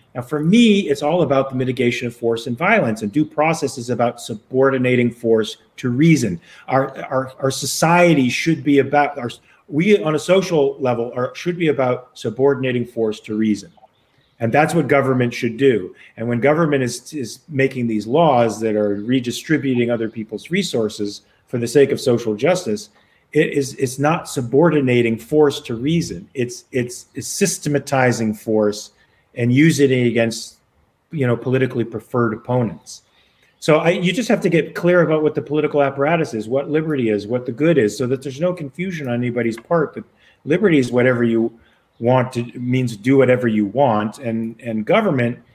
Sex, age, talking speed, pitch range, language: male, 40-59, 175 wpm, 115-150 Hz, English